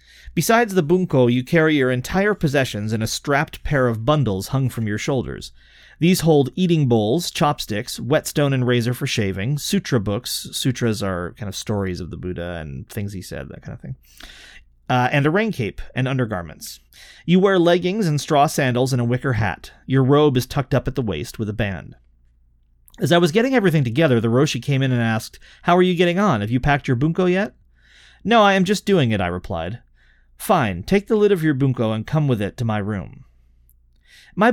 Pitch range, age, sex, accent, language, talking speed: 105-155 Hz, 30-49, male, American, English, 210 wpm